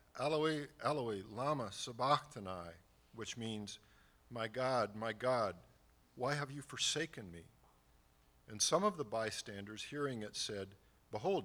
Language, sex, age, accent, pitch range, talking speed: English, male, 50-69, American, 95-130 Hz, 125 wpm